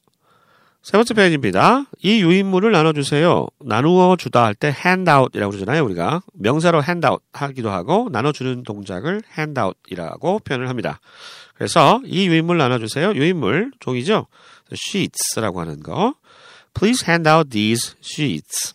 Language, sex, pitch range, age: Korean, male, 120-200 Hz, 40-59